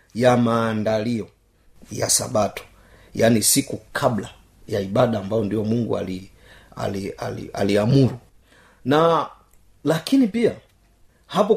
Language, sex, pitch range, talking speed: Swahili, male, 105-140 Hz, 105 wpm